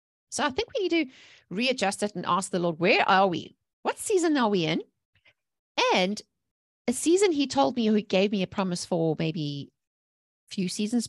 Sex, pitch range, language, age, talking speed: female, 175-225 Hz, English, 40-59, 195 wpm